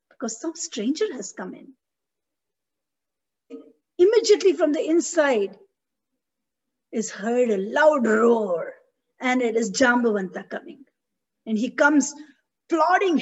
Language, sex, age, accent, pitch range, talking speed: English, female, 50-69, Indian, 240-320 Hz, 110 wpm